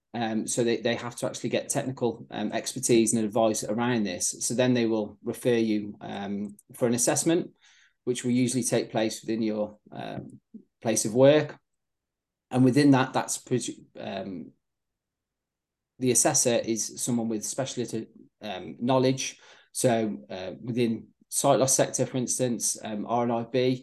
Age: 20-39